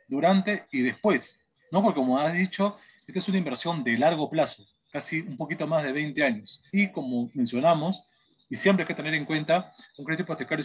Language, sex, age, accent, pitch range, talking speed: Spanish, male, 30-49, Argentinian, 140-190 Hz, 195 wpm